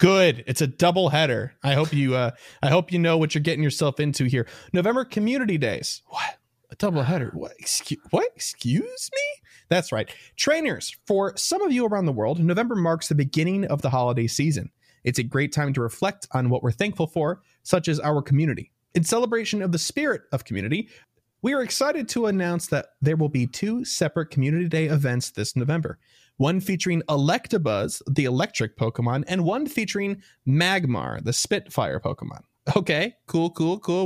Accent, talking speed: American, 185 wpm